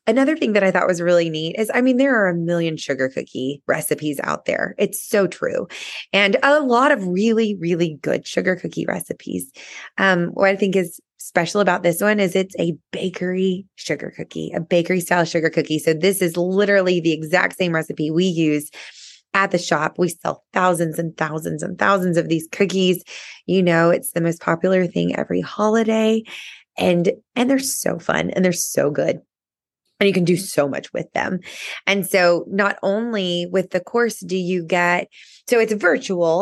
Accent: American